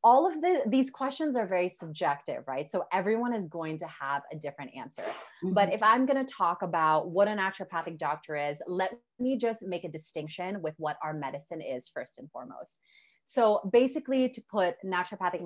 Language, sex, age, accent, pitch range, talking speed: English, female, 20-39, American, 160-200 Hz, 185 wpm